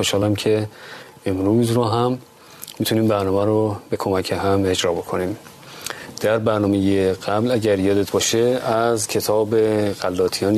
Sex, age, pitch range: male, 40-59, 100-125 Hz